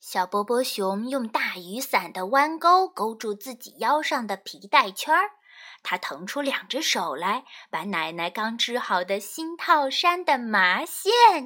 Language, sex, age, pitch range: Chinese, female, 10-29, 220-360 Hz